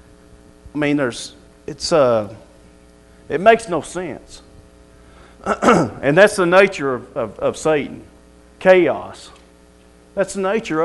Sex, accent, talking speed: male, American, 115 wpm